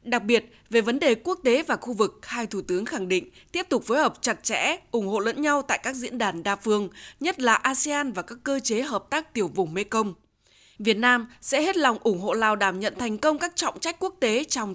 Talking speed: 250 wpm